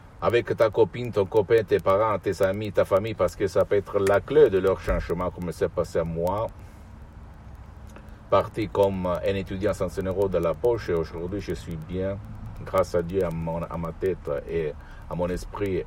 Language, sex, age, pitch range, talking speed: Italian, male, 60-79, 80-100 Hz, 200 wpm